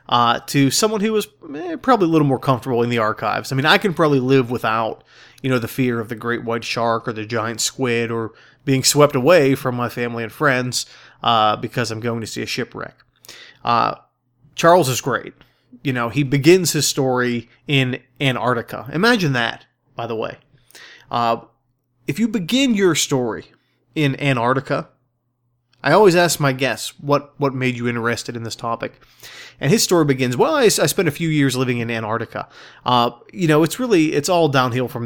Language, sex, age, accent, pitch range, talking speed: English, male, 20-39, American, 120-145 Hz, 190 wpm